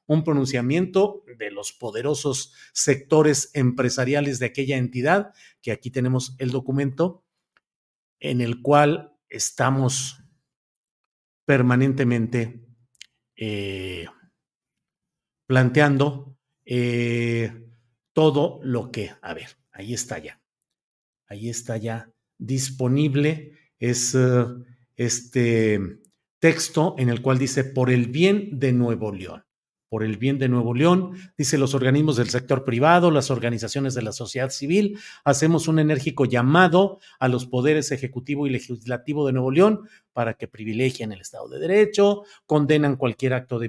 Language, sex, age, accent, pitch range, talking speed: Spanish, male, 50-69, Mexican, 125-160 Hz, 125 wpm